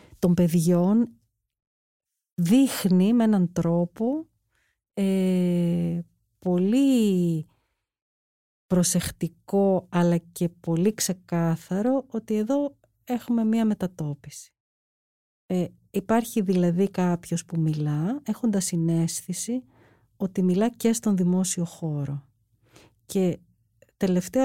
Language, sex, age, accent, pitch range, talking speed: Greek, female, 40-59, native, 165-210 Hz, 85 wpm